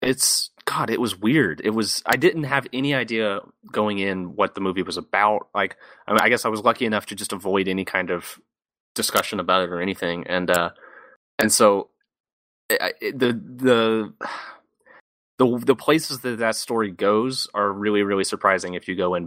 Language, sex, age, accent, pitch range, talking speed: English, male, 30-49, American, 95-135 Hz, 185 wpm